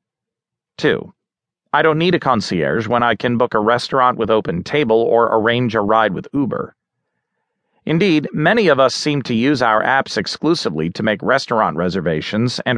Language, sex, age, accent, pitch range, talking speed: English, male, 40-59, American, 115-150 Hz, 170 wpm